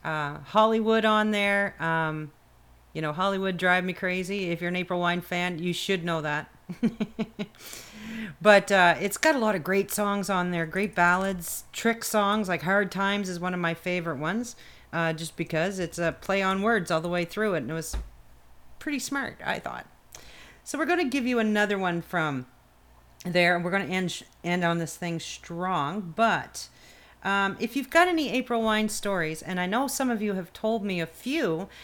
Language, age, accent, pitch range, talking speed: English, 40-59, American, 165-215 Hz, 200 wpm